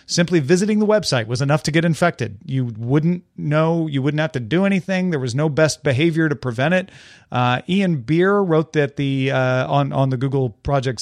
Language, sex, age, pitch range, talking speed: English, male, 40-59, 135-165 Hz, 205 wpm